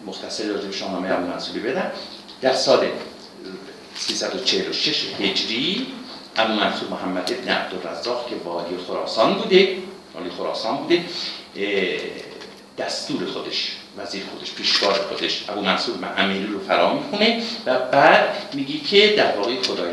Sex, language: male, Persian